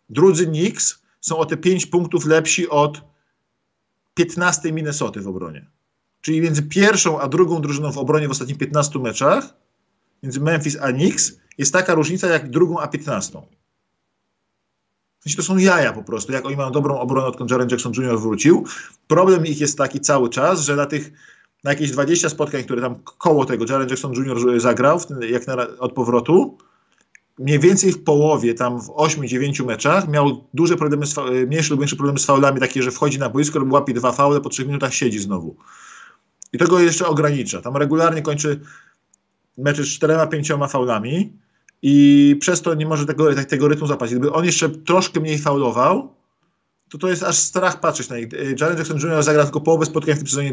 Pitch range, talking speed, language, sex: 135-165 Hz, 185 wpm, Polish, male